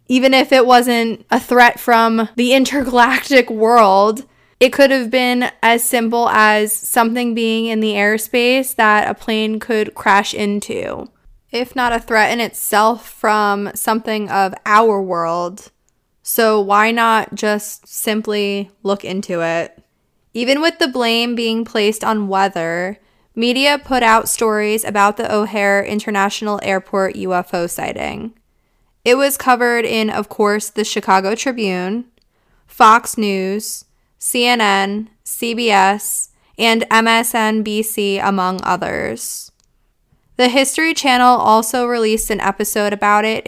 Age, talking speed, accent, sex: 20-39, 125 wpm, American, female